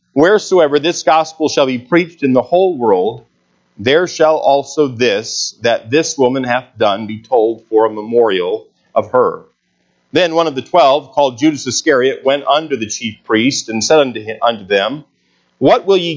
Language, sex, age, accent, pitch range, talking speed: English, male, 50-69, American, 100-150 Hz, 175 wpm